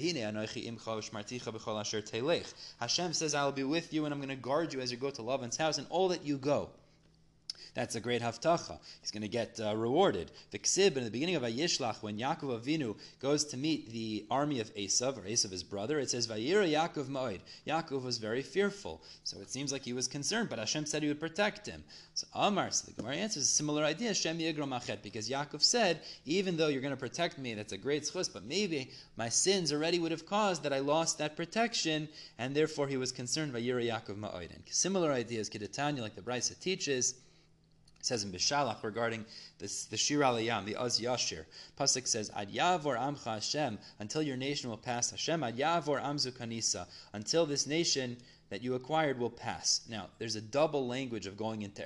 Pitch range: 110-150 Hz